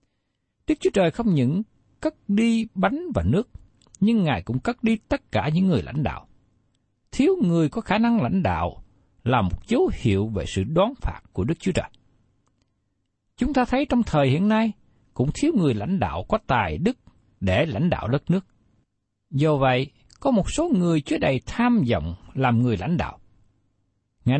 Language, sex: Vietnamese, male